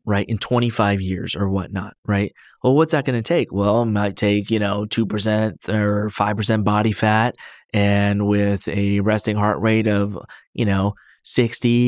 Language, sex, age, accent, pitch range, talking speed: English, male, 30-49, American, 105-125 Hz, 180 wpm